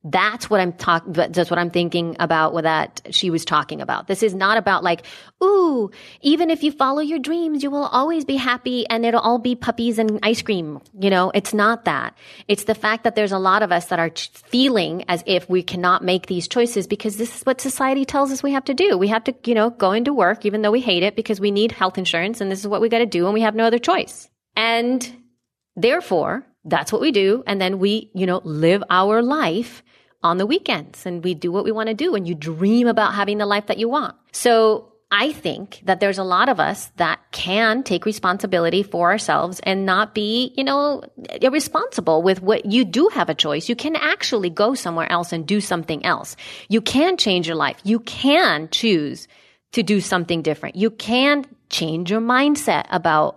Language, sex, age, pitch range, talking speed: English, female, 30-49, 175-230 Hz, 225 wpm